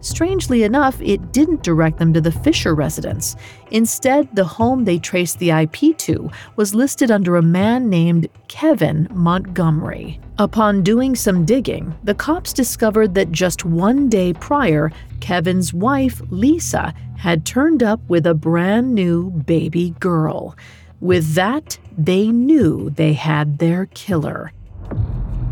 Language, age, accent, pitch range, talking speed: English, 40-59, American, 165-230 Hz, 135 wpm